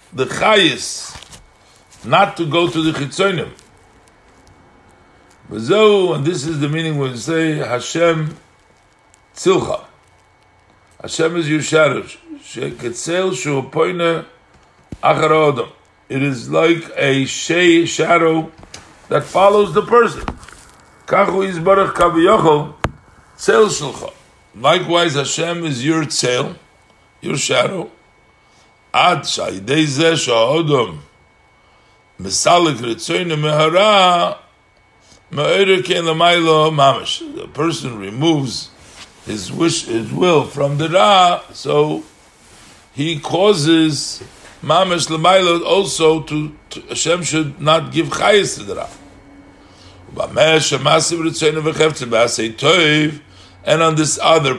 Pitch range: 120-170 Hz